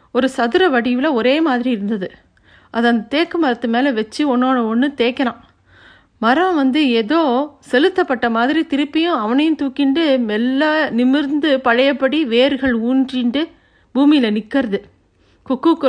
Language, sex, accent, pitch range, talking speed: Tamil, female, native, 220-275 Hz, 115 wpm